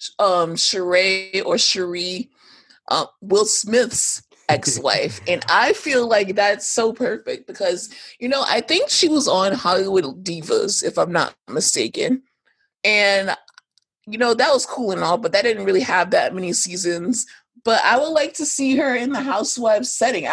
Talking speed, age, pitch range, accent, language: 170 wpm, 30-49, 180-265 Hz, American, English